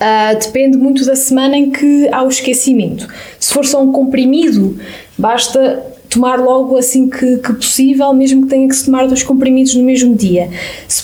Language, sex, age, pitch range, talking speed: Portuguese, female, 10-29, 215-260 Hz, 185 wpm